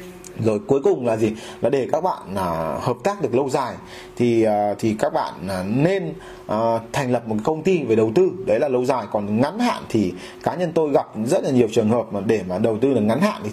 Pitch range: 115-155 Hz